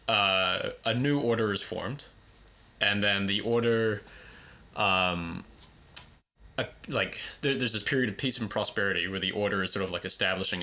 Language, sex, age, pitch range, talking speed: English, male, 20-39, 95-115 Hz, 150 wpm